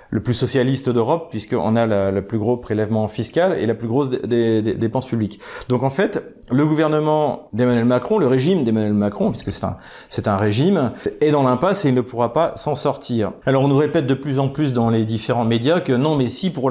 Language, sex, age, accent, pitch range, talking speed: French, male, 40-59, French, 115-150 Hz, 215 wpm